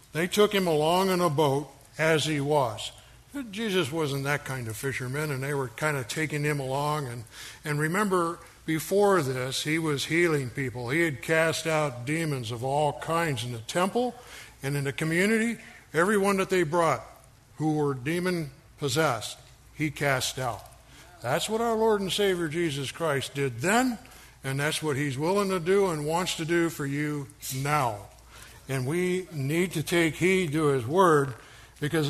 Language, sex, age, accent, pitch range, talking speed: English, male, 60-79, American, 140-175 Hz, 170 wpm